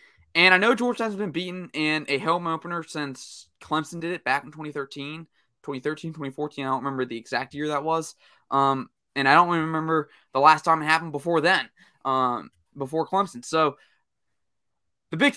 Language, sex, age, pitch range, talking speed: English, male, 20-39, 140-170 Hz, 180 wpm